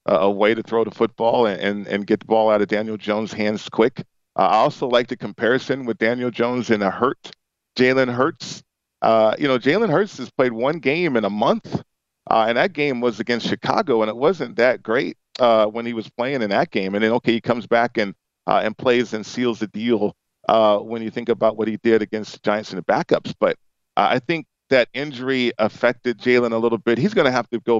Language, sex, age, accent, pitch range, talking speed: English, male, 40-59, American, 105-125 Hz, 235 wpm